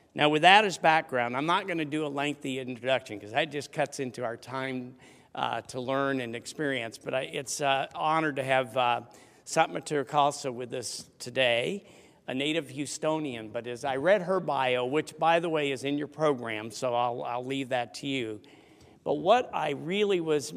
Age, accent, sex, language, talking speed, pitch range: 50-69, American, male, English, 195 wpm, 130-155 Hz